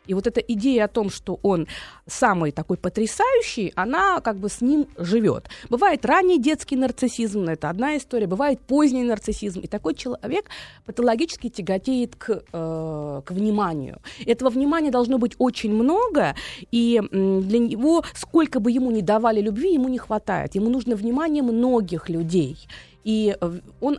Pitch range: 195-260 Hz